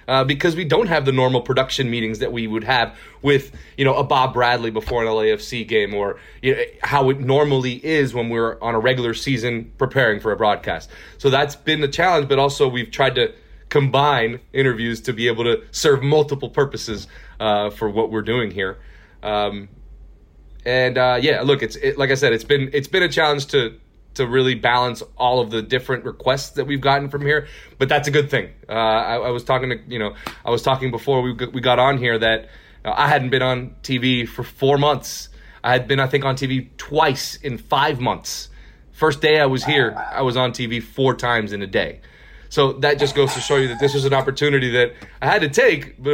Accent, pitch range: American, 115-140 Hz